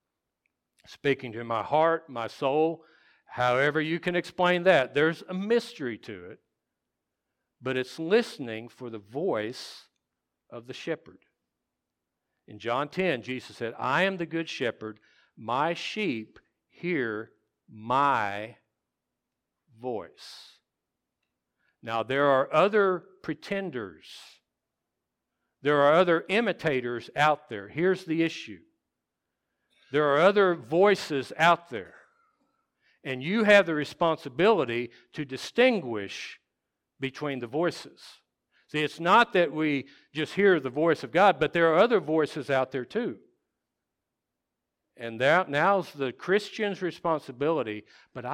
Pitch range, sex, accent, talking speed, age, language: 120-170 Hz, male, American, 120 wpm, 60-79, English